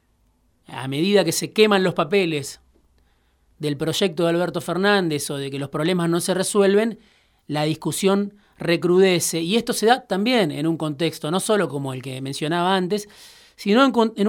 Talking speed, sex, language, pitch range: 170 wpm, male, Spanish, 150-200 Hz